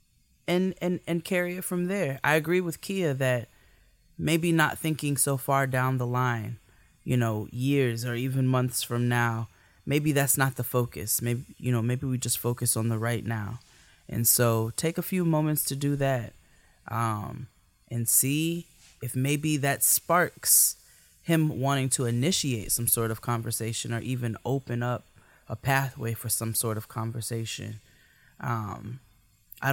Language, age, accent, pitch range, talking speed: English, 20-39, American, 115-140 Hz, 160 wpm